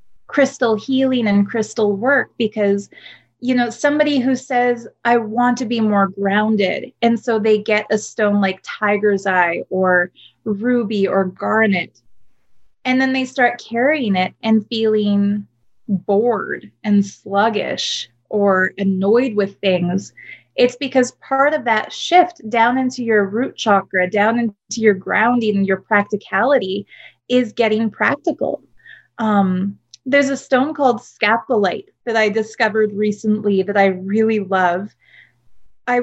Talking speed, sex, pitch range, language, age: 135 wpm, female, 205-255 Hz, English, 20-39